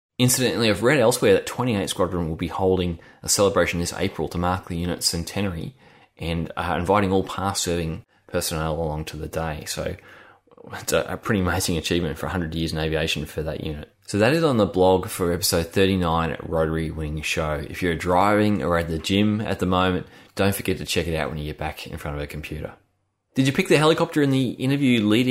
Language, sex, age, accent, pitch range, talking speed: English, male, 20-39, Australian, 80-105 Hz, 215 wpm